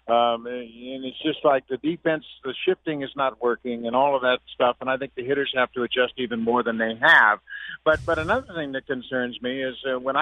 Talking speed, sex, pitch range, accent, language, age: 235 wpm, male, 125-145 Hz, American, English, 50-69